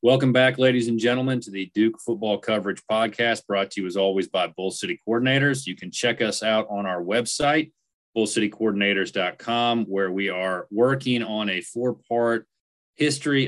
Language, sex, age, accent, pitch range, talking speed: English, male, 30-49, American, 100-130 Hz, 165 wpm